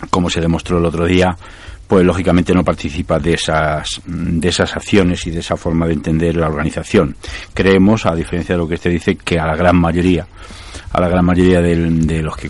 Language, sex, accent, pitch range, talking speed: Spanish, male, Spanish, 80-90 Hz, 210 wpm